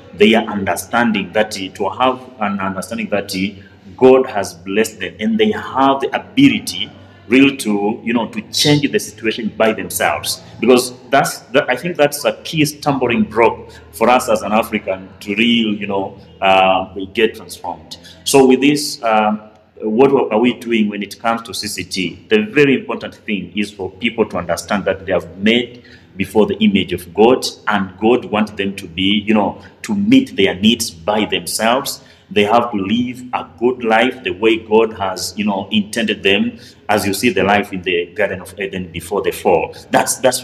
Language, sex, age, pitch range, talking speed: English, male, 30-49, 100-125 Hz, 185 wpm